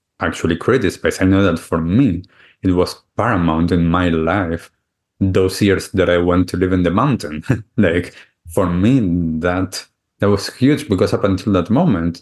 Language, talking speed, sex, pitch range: English, 180 wpm, male, 90-110 Hz